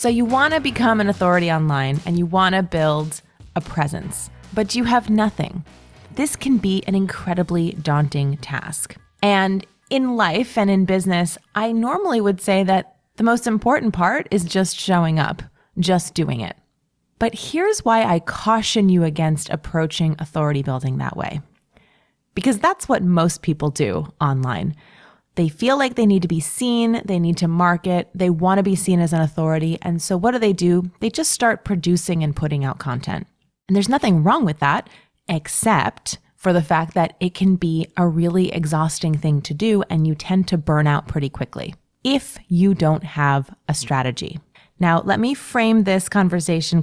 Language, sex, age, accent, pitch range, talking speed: English, female, 30-49, American, 155-200 Hz, 180 wpm